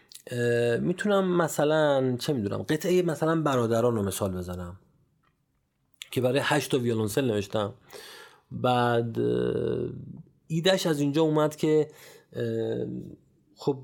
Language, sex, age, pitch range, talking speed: Persian, male, 30-49, 105-140 Hz, 100 wpm